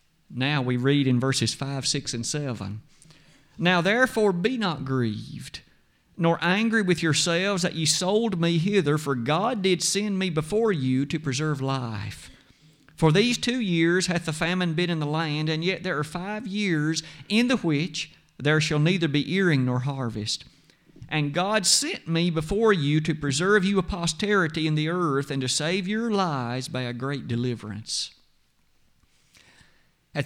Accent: American